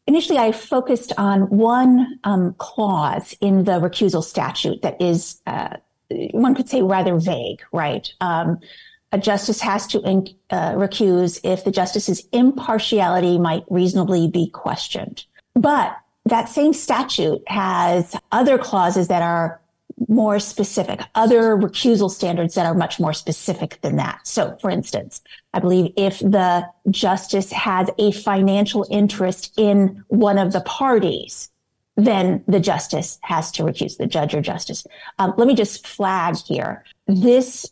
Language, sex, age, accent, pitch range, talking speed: English, female, 40-59, American, 180-220 Hz, 145 wpm